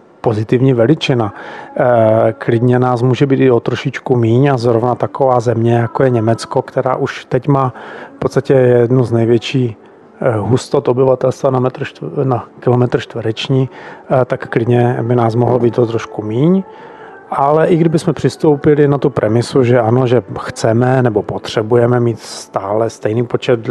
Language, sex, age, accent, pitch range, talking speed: Czech, male, 40-59, native, 120-135 Hz, 150 wpm